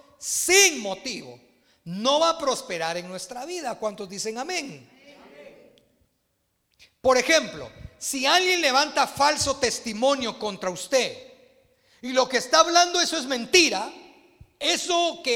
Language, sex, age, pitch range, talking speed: Spanish, male, 40-59, 230-310 Hz, 120 wpm